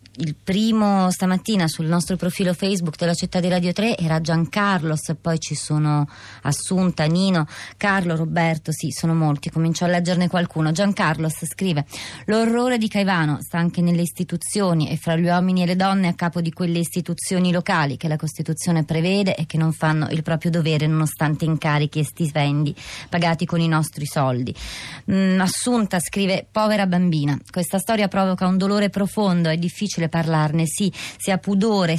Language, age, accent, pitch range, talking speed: Italian, 20-39, native, 160-185 Hz, 165 wpm